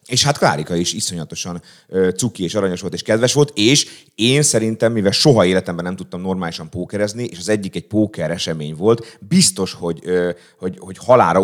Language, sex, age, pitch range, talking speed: Hungarian, male, 30-49, 90-110 Hz, 180 wpm